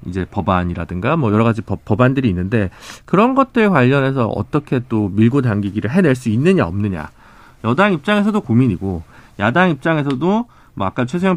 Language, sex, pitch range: Korean, male, 110-165 Hz